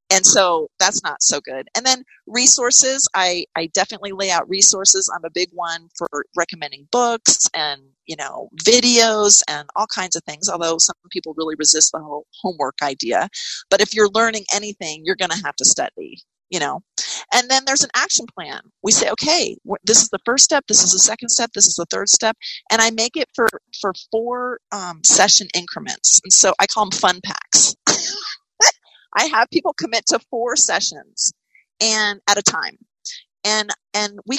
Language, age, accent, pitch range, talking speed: English, 40-59, American, 185-255 Hz, 190 wpm